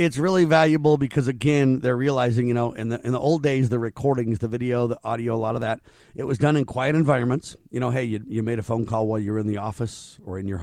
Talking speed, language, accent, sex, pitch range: 275 wpm, English, American, male, 110-140 Hz